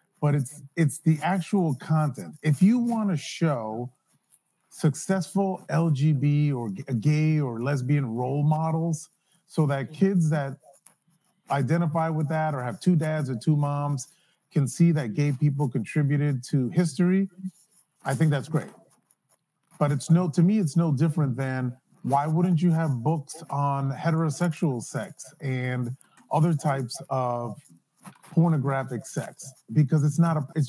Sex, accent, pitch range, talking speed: male, American, 140-170 Hz, 140 wpm